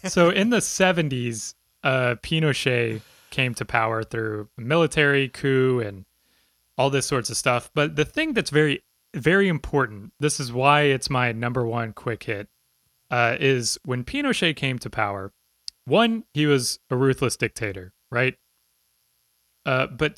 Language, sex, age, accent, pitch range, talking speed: English, male, 20-39, American, 110-150 Hz, 150 wpm